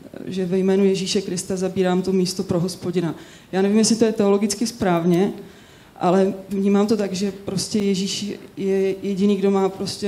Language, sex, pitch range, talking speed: Czech, female, 185-200 Hz, 175 wpm